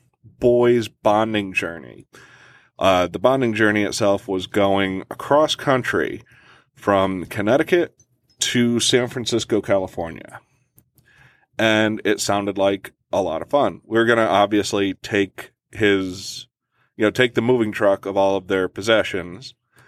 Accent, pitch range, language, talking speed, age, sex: American, 105-125 Hz, English, 135 wpm, 30-49, male